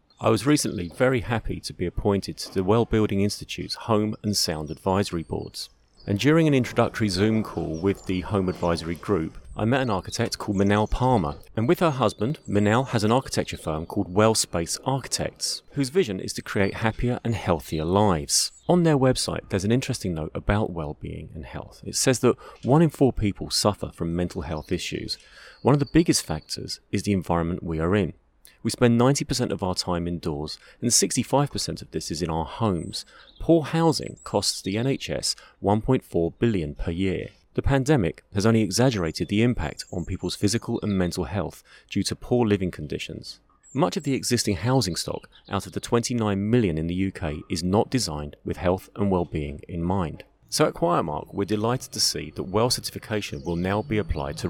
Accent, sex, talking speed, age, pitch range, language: British, male, 190 wpm, 30-49, 90-120 Hz, English